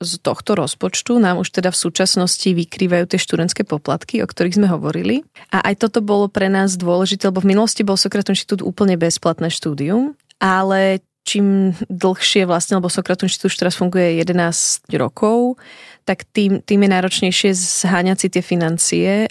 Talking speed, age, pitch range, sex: 160 wpm, 20-39, 175-195 Hz, female